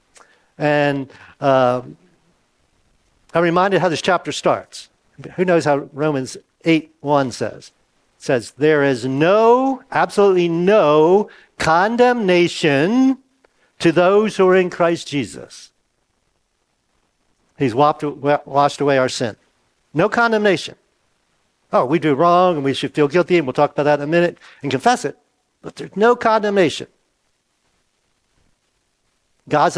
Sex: male